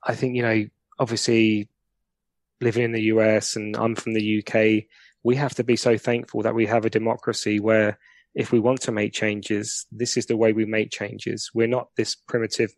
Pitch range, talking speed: 110-120 Hz, 200 wpm